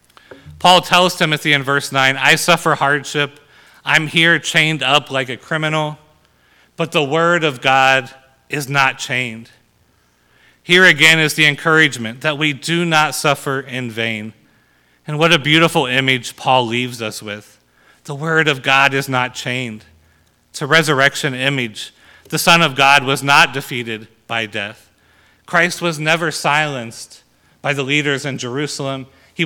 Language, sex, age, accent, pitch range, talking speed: English, male, 40-59, American, 130-155 Hz, 155 wpm